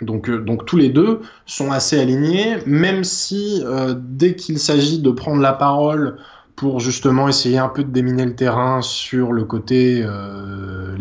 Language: French